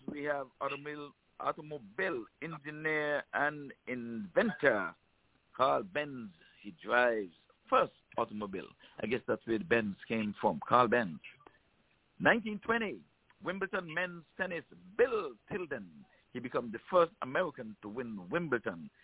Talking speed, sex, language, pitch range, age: 115 wpm, male, English, 120-180 Hz, 60-79